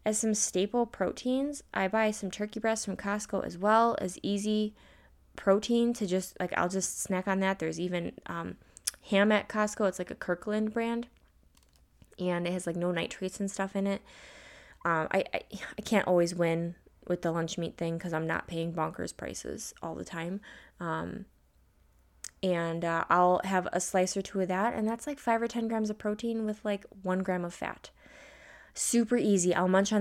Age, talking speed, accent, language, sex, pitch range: 20-39, 195 wpm, American, English, female, 165-205 Hz